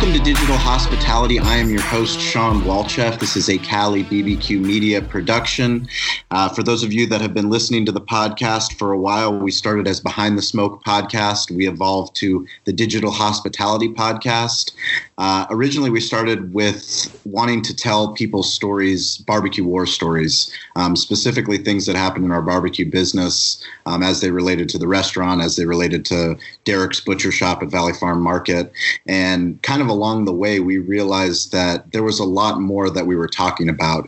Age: 30-49